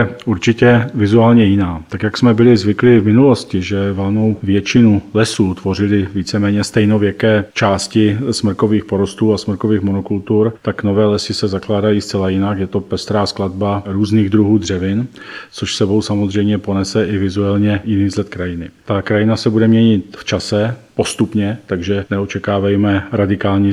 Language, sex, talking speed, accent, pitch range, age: Czech, male, 145 wpm, native, 95-110 Hz, 40-59